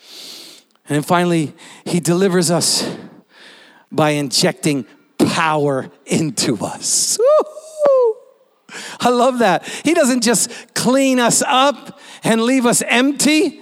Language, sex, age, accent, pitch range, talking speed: English, male, 50-69, American, 150-240 Hz, 100 wpm